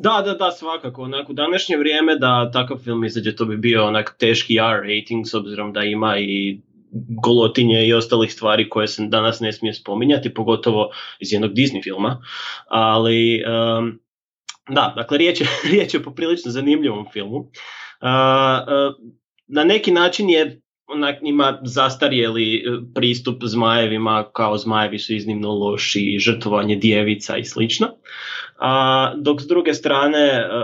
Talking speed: 145 wpm